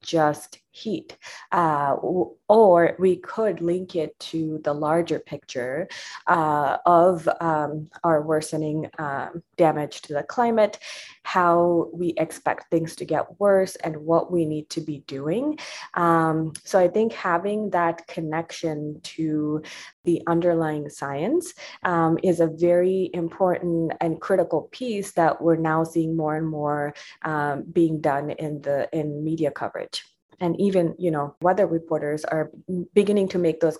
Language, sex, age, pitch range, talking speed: English, female, 20-39, 160-185 Hz, 140 wpm